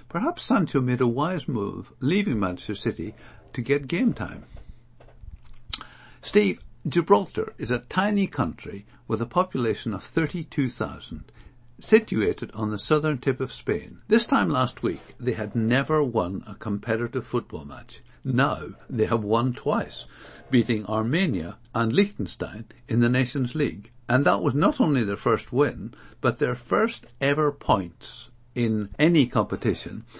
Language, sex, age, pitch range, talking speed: English, male, 60-79, 110-140 Hz, 145 wpm